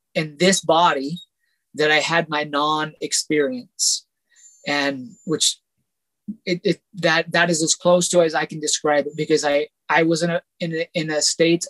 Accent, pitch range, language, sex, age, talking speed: American, 165-200 Hz, English, male, 30-49, 185 wpm